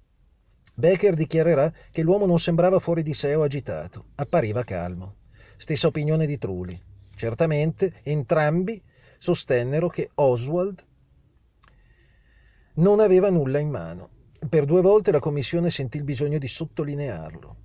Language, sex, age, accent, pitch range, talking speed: Italian, male, 40-59, native, 120-175 Hz, 125 wpm